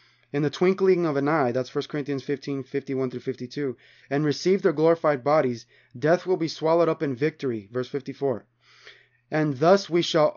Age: 20-39